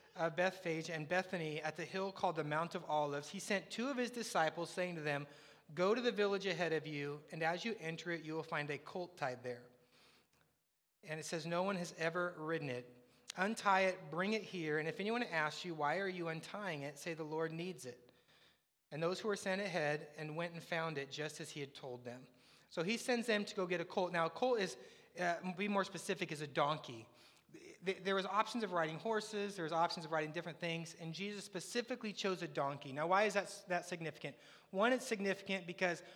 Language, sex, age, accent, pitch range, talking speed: English, male, 30-49, American, 160-195 Hz, 225 wpm